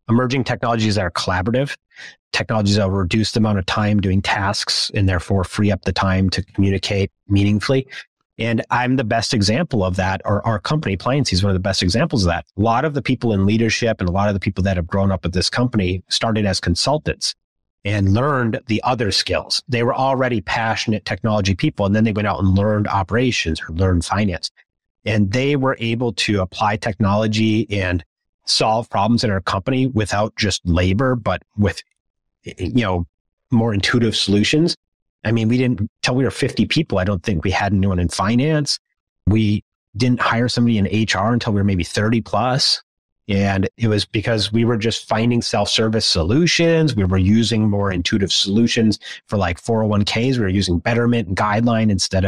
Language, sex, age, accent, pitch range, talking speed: English, male, 30-49, American, 95-115 Hz, 190 wpm